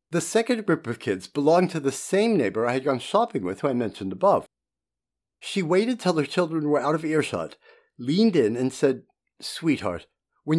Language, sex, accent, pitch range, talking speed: English, male, American, 135-195 Hz, 195 wpm